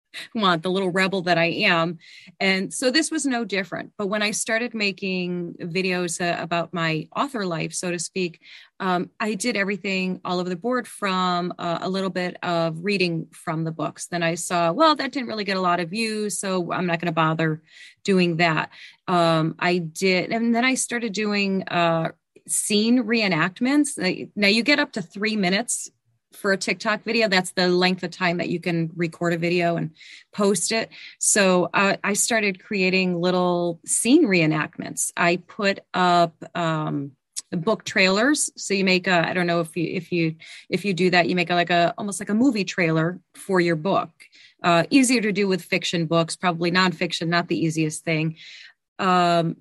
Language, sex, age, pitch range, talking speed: English, female, 30-49, 170-210 Hz, 185 wpm